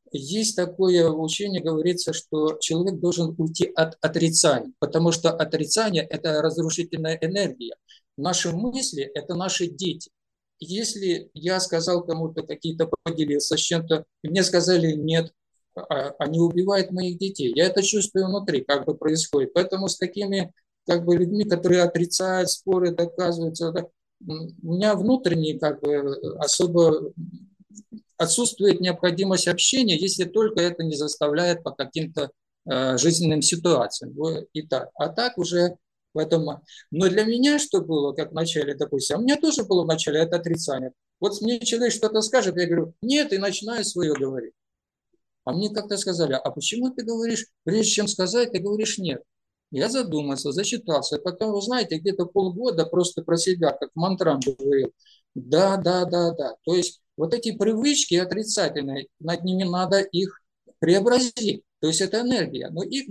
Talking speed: 145 wpm